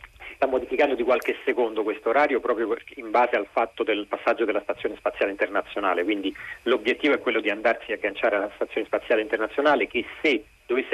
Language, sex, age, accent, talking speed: Italian, male, 40-59, native, 180 wpm